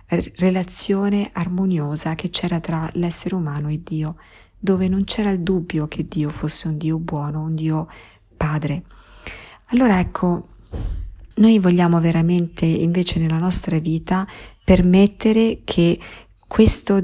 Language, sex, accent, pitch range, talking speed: Italian, female, native, 160-190 Hz, 125 wpm